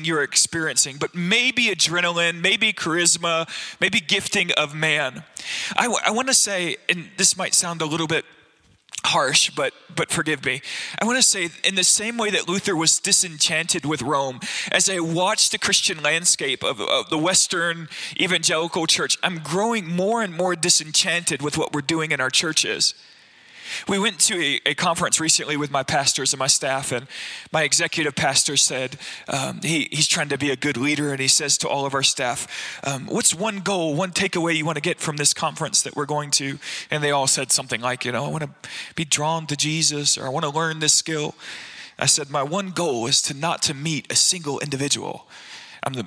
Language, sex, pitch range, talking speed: English, male, 145-180 Hz, 200 wpm